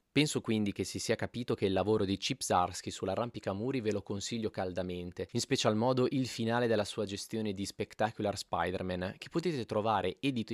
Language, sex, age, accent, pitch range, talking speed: Italian, male, 20-39, native, 100-125 Hz, 180 wpm